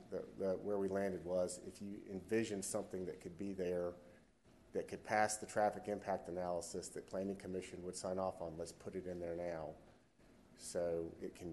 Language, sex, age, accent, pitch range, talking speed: English, male, 40-59, American, 95-110 Hz, 195 wpm